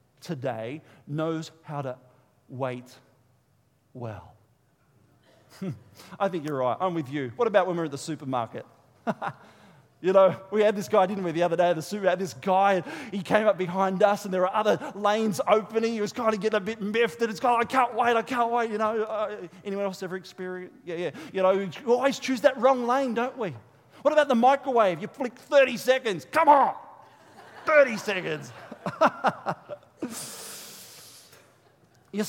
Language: English